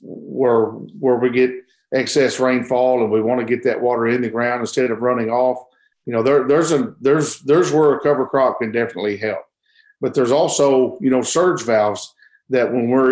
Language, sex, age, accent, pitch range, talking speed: English, male, 50-69, American, 120-140 Hz, 195 wpm